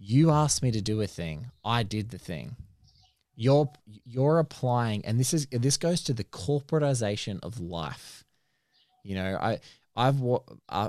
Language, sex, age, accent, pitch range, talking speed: English, male, 20-39, Australian, 95-130 Hz, 155 wpm